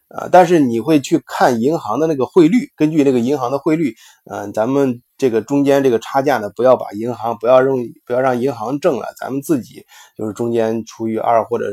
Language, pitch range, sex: Chinese, 110-130 Hz, male